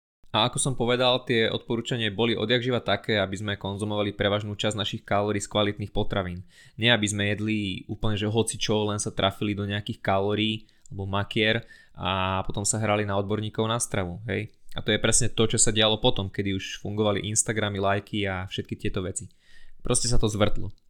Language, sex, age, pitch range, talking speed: Slovak, male, 20-39, 100-115 Hz, 190 wpm